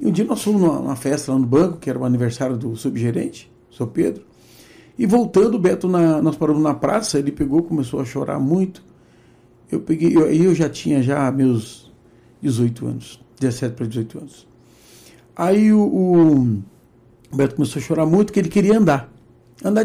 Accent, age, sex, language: Brazilian, 60-79, male, Portuguese